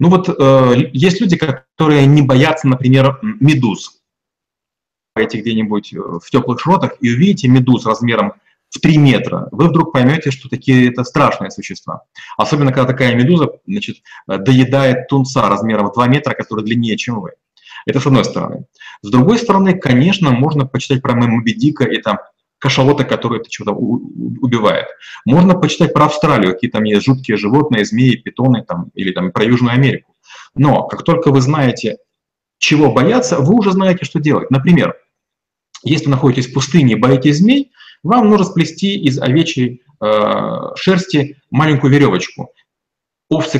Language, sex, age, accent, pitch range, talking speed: Russian, male, 30-49, native, 125-160 Hz, 155 wpm